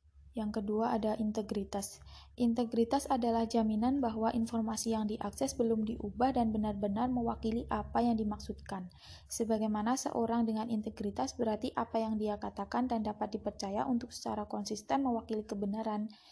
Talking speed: 130 wpm